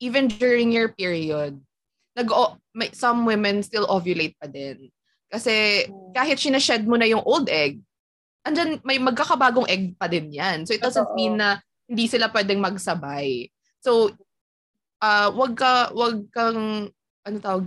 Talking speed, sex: 155 wpm, female